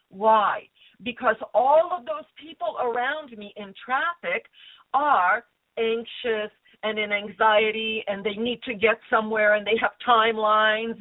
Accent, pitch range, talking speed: American, 220-255 Hz, 135 wpm